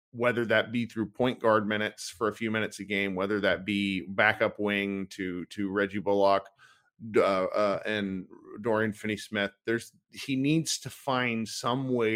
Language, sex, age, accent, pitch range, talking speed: English, male, 40-59, American, 105-135 Hz, 175 wpm